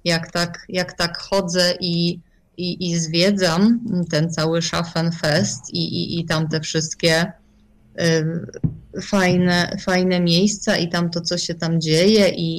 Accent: native